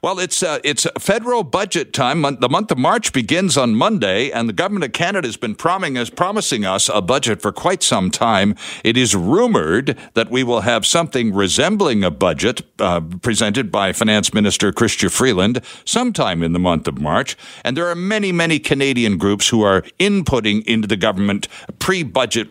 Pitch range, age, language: 105-165 Hz, 60-79, English